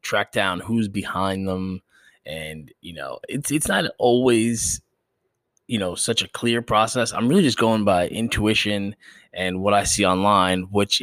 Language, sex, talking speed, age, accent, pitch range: English, male, 165 wpm, 20-39, American, 90-110 Hz